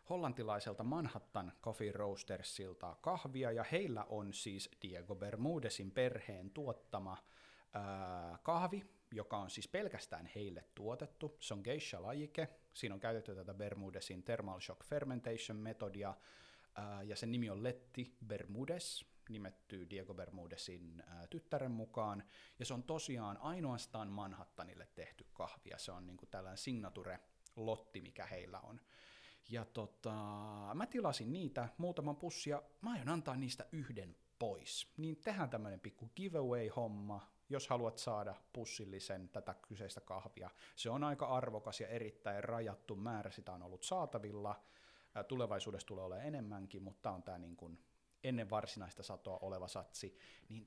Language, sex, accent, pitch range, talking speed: Finnish, male, native, 100-140 Hz, 135 wpm